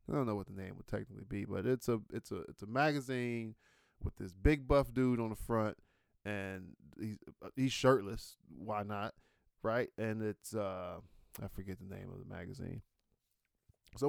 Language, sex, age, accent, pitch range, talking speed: English, male, 20-39, American, 100-125 Hz, 185 wpm